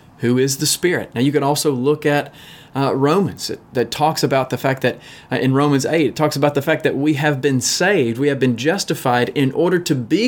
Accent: American